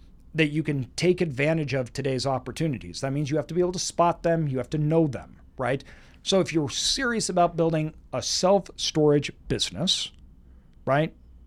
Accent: American